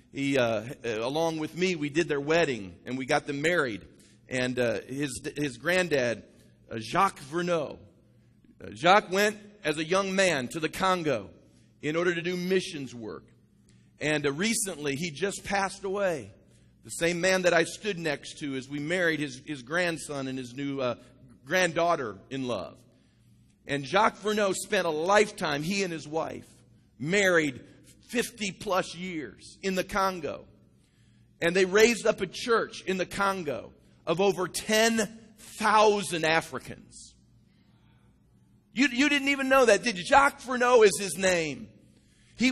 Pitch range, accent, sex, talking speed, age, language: 145-215 Hz, American, male, 155 wpm, 50-69, English